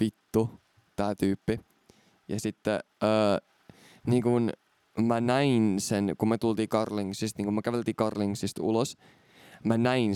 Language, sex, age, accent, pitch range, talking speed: Finnish, male, 20-39, native, 105-120 Hz, 135 wpm